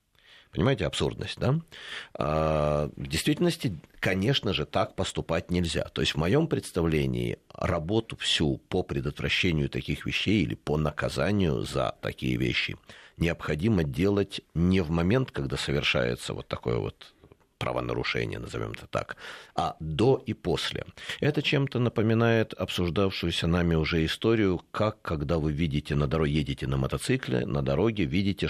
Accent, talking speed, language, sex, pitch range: native, 135 wpm, Russian, male, 75-100 Hz